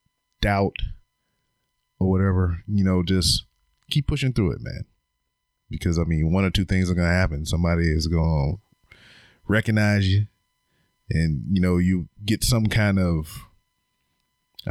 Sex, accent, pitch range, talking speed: male, American, 85-105 Hz, 140 wpm